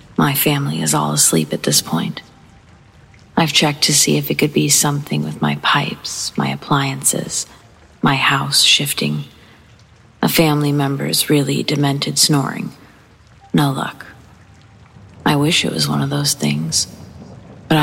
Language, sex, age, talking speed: English, female, 40-59, 140 wpm